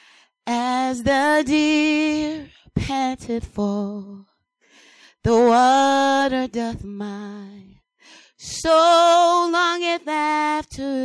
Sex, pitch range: female, 210-300 Hz